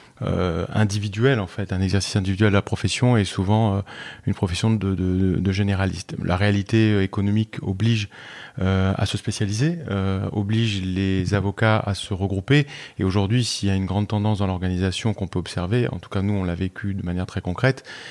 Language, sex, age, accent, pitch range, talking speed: French, male, 30-49, French, 95-110 Hz, 190 wpm